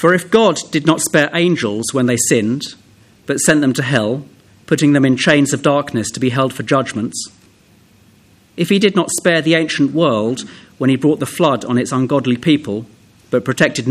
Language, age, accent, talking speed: English, 40-59, British, 195 wpm